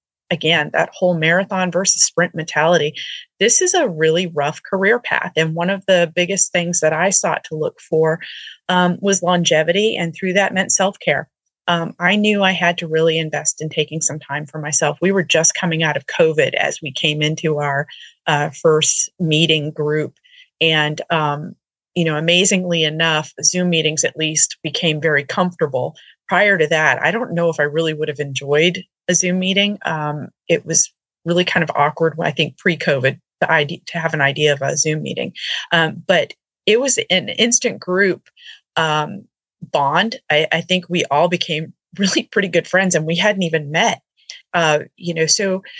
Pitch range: 155-185 Hz